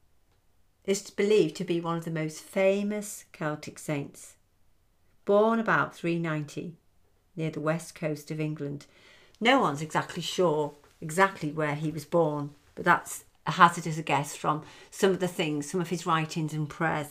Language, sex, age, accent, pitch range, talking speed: English, female, 50-69, British, 150-180 Hz, 160 wpm